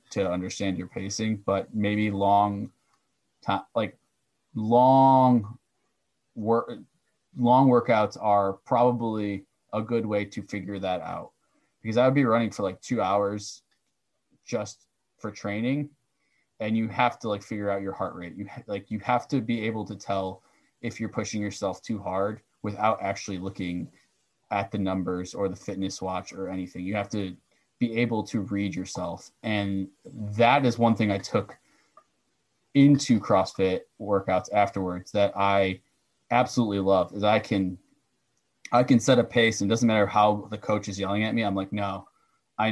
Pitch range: 95-115 Hz